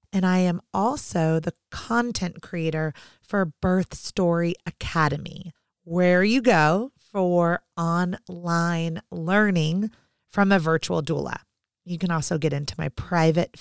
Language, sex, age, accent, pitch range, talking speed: English, female, 30-49, American, 170-230 Hz, 125 wpm